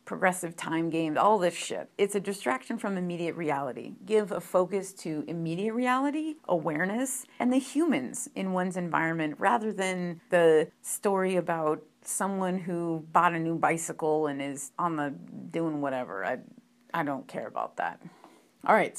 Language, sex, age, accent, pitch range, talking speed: English, female, 40-59, American, 165-210 Hz, 160 wpm